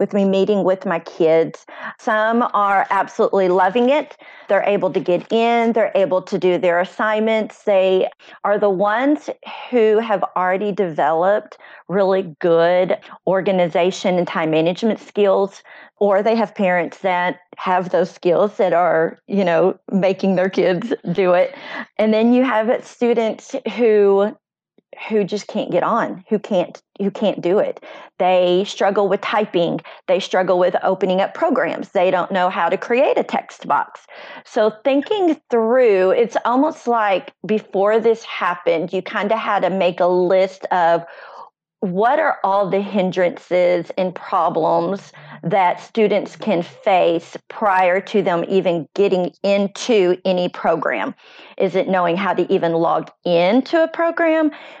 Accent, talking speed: American, 150 wpm